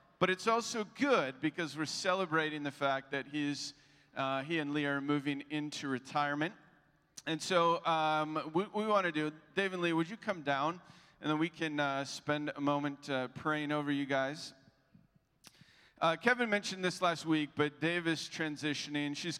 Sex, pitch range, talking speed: male, 125-160 Hz, 180 wpm